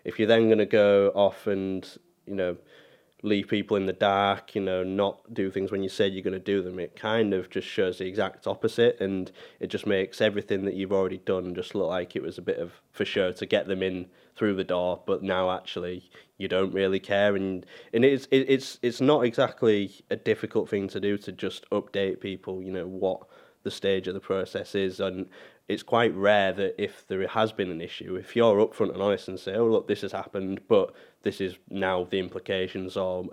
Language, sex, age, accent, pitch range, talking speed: English, male, 20-39, British, 95-110 Hz, 220 wpm